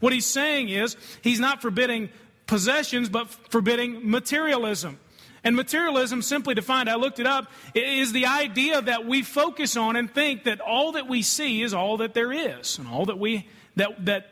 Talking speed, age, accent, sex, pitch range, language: 190 wpm, 40-59, American, male, 200-260 Hz, English